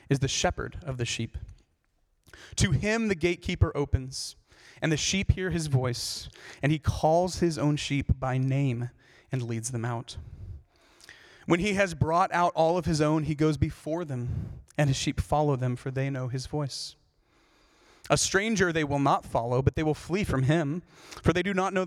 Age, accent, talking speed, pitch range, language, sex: 30-49, American, 190 wpm, 120-160 Hz, English, male